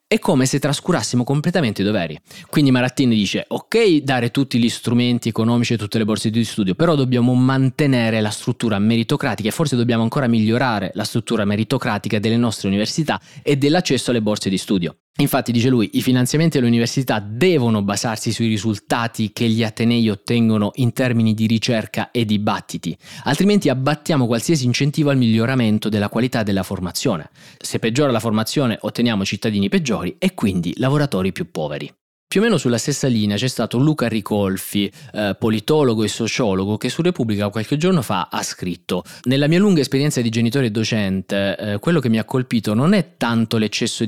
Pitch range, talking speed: 105-135 Hz, 175 wpm